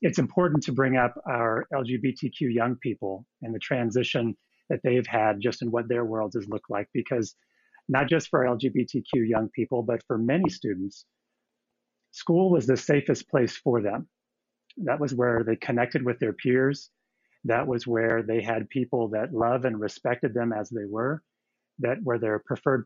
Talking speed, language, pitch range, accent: 175 wpm, English, 115-135 Hz, American